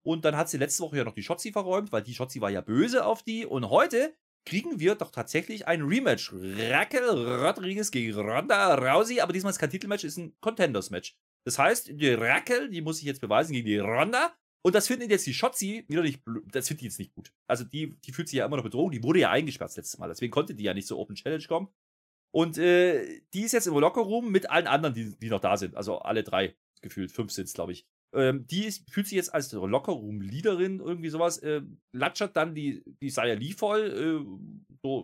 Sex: male